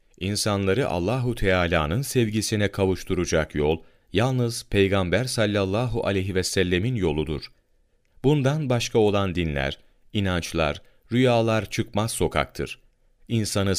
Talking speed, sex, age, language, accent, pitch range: 95 wpm, male, 40-59, Turkish, native, 85-120 Hz